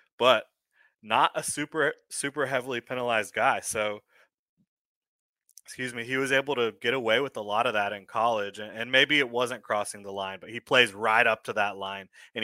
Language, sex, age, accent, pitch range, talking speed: English, male, 20-39, American, 105-125 Hz, 195 wpm